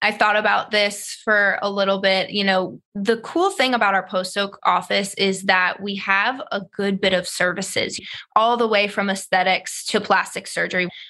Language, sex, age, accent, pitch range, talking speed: English, female, 20-39, American, 190-220 Hz, 190 wpm